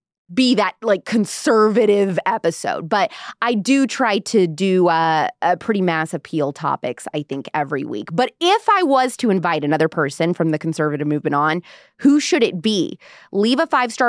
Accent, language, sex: American, English, female